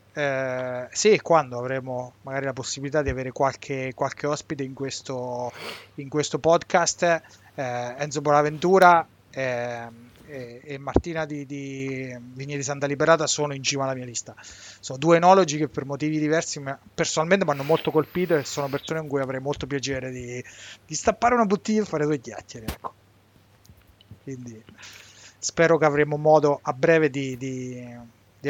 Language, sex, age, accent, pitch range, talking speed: Italian, male, 30-49, native, 125-160 Hz, 165 wpm